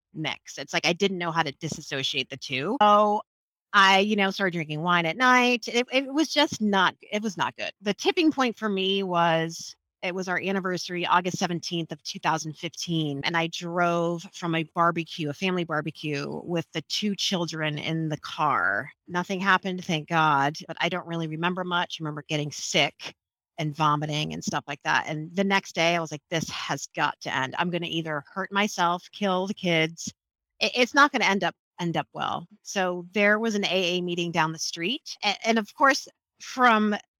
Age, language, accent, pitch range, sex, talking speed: 30-49, English, American, 165-205 Hz, female, 190 wpm